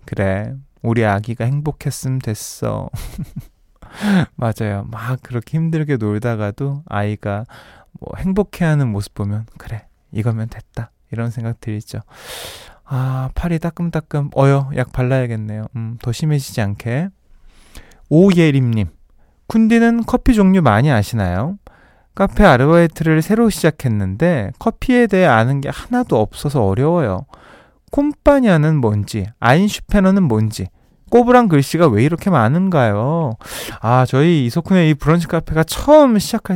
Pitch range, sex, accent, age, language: 110-165 Hz, male, native, 20-39, Korean